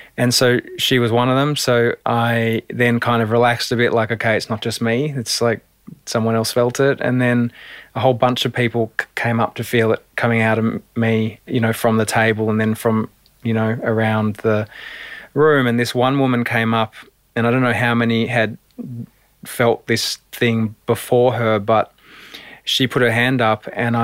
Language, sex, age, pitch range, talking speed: English, male, 20-39, 115-120 Hz, 200 wpm